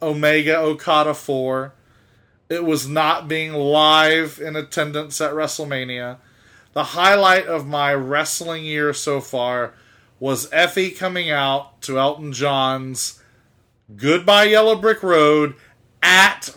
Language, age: English, 30-49